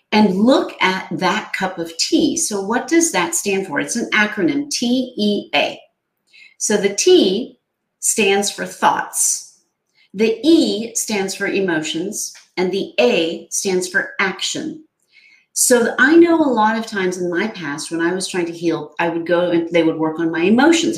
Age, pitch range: 40-59, 180-270 Hz